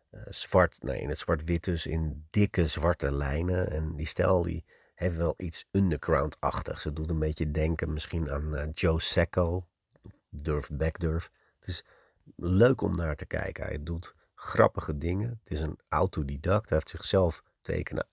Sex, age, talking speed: male, 50-69, 165 wpm